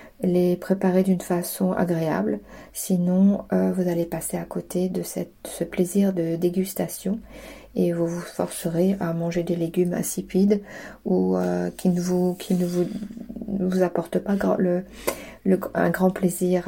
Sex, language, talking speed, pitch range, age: female, French, 160 wpm, 175-200 Hz, 40-59